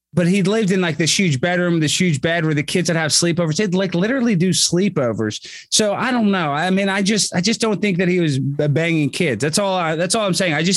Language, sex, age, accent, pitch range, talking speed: English, male, 20-39, American, 130-180 Hz, 265 wpm